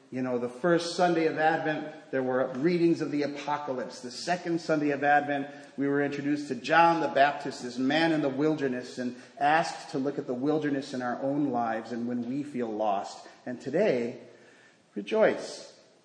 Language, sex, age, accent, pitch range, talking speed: English, male, 40-59, American, 130-175 Hz, 185 wpm